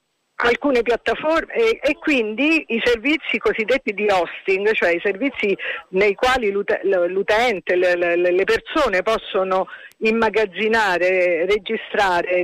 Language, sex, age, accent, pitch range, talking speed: Italian, female, 50-69, native, 190-270 Hz, 115 wpm